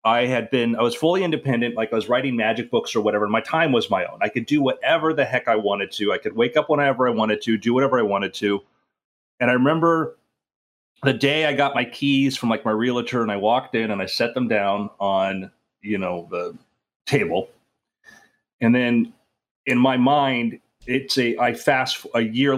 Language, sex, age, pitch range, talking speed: English, male, 30-49, 110-140 Hz, 215 wpm